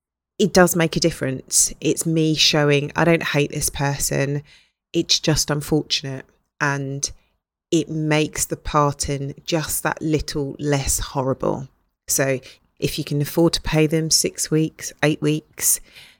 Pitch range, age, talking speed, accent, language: 140-160 Hz, 30-49, 140 wpm, British, English